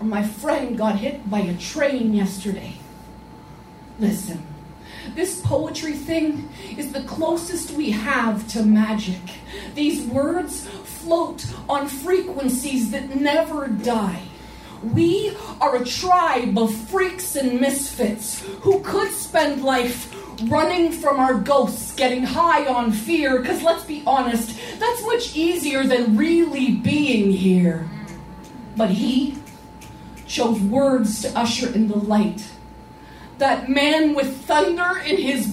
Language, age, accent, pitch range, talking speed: English, 30-49, American, 225-310 Hz, 125 wpm